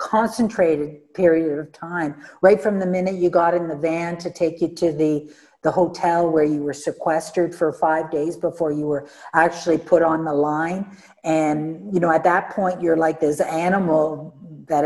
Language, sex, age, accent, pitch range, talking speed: English, female, 50-69, American, 165-195 Hz, 185 wpm